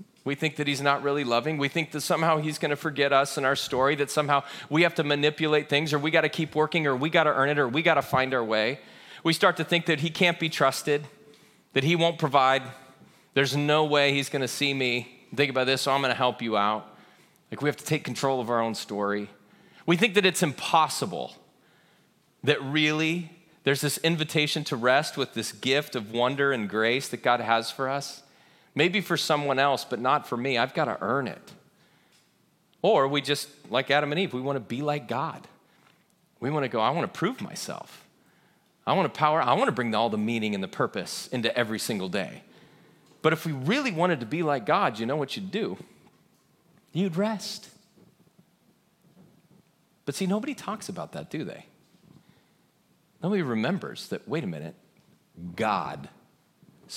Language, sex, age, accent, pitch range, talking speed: English, male, 30-49, American, 135-165 Hz, 205 wpm